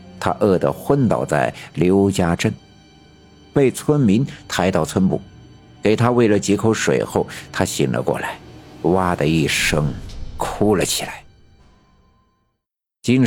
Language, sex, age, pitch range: Chinese, male, 50-69, 95-125 Hz